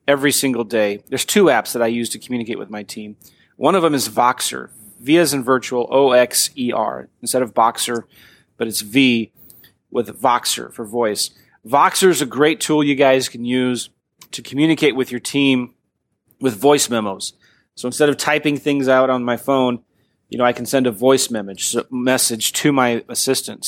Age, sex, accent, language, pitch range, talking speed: 30-49, male, American, English, 120-145 Hz, 180 wpm